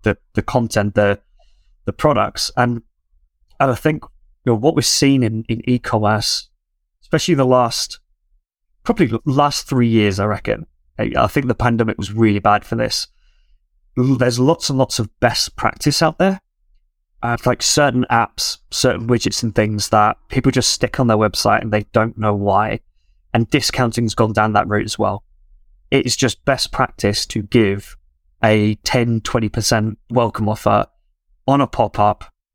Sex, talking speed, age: male, 170 wpm, 30-49